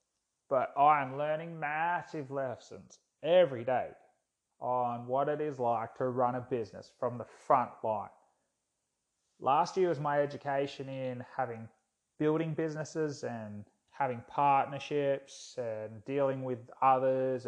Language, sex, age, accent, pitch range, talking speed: English, male, 30-49, Australian, 125-140 Hz, 125 wpm